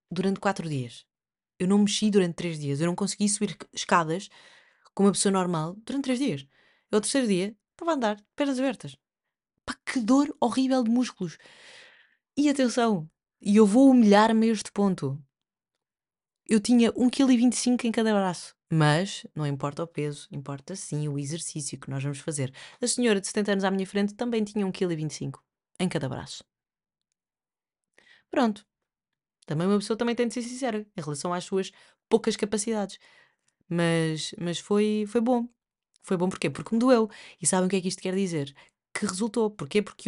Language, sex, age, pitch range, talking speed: Portuguese, female, 20-39, 170-230 Hz, 175 wpm